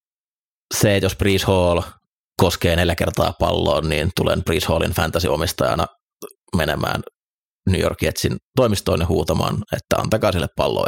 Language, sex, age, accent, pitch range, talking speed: Finnish, male, 30-49, native, 80-95 Hz, 130 wpm